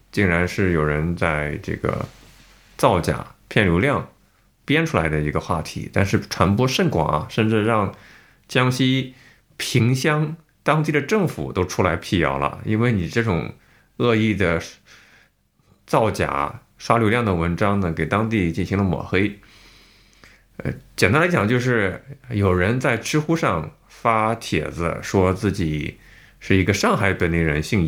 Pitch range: 95-125 Hz